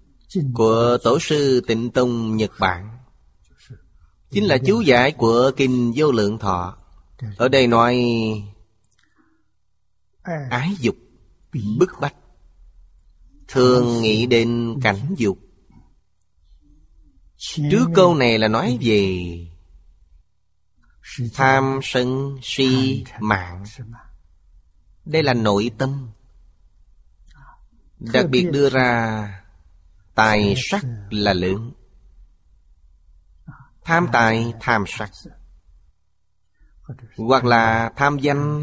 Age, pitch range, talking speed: 30-49, 90-125 Hz, 90 wpm